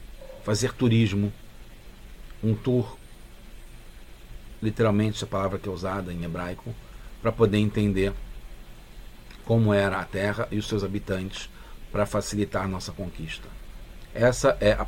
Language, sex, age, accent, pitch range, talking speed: English, male, 50-69, Brazilian, 95-110 Hz, 125 wpm